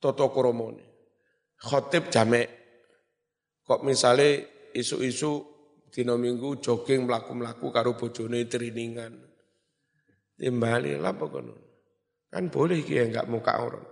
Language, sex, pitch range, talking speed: Indonesian, male, 115-140 Hz, 110 wpm